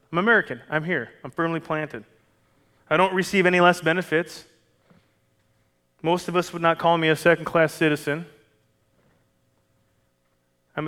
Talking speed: 130 wpm